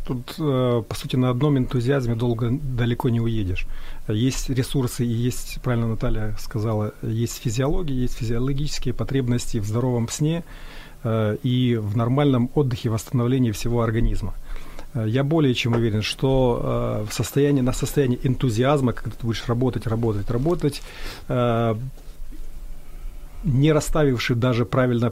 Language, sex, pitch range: Ukrainian, male, 115-145 Hz